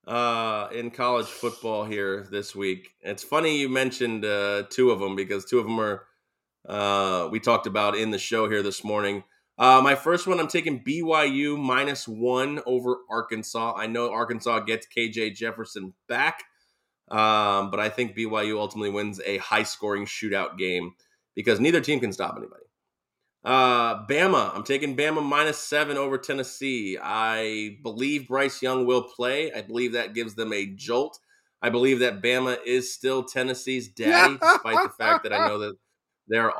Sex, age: male, 20-39